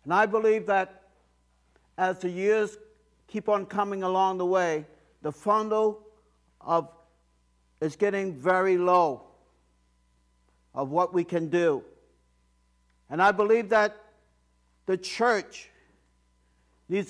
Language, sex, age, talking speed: English, male, 60-79, 110 wpm